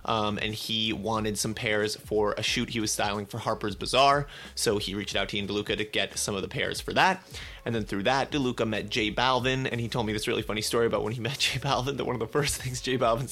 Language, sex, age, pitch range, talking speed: English, male, 30-49, 105-125 Hz, 270 wpm